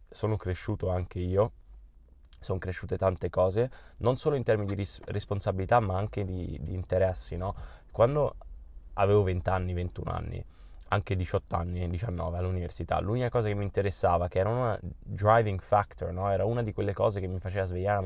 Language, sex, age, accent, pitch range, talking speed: Italian, male, 20-39, native, 90-110 Hz, 175 wpm